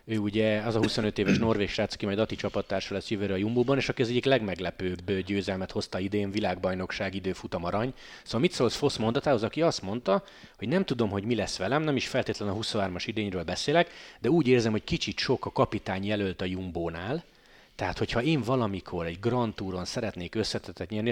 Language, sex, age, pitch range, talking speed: Hungarian, male, 30-49, 100-120 Hz, 195 wpm